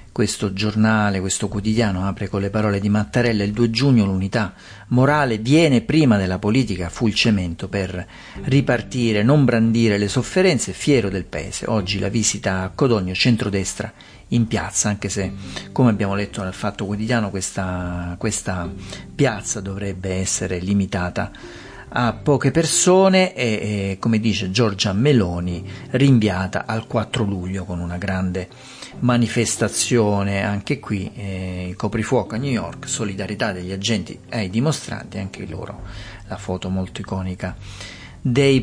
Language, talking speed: Italian, 140 wpm